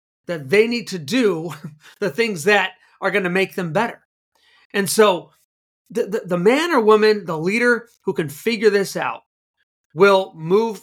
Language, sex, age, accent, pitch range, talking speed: English, male, 40-59, American, 180-235 Hz, 170 wpm